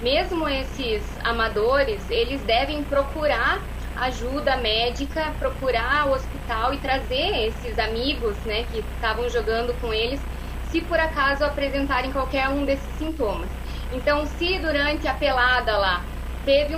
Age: 20-39